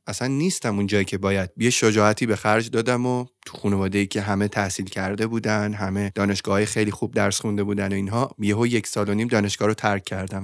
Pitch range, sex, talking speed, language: 100-115 Hz, male, 225 wpm, Persian